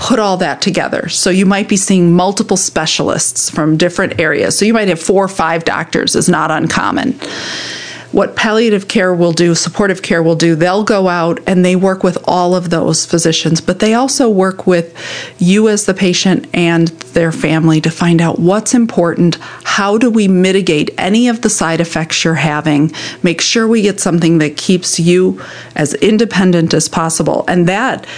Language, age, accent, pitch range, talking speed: English, 40-59, American, 165-205 Hz, 185 wpm